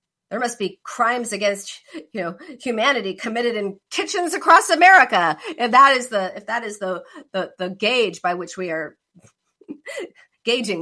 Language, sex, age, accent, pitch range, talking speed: English, female, 40-59, American, 185-285 Hz, 160 wpm